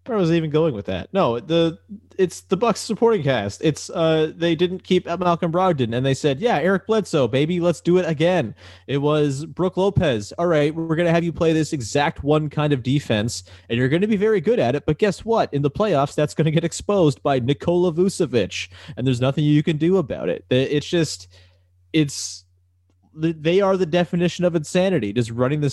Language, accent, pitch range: English, American, 115-170 Hz